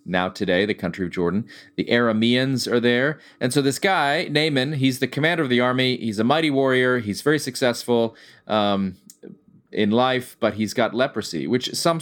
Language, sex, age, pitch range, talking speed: English, male, 30-49, 100-130 Hz, 190 wpm